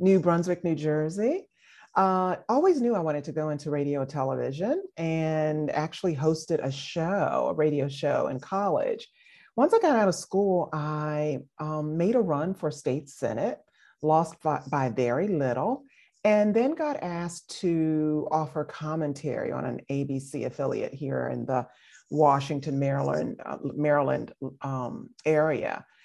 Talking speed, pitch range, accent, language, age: 145 wpm, 145-200 Hz, American, English, 40-59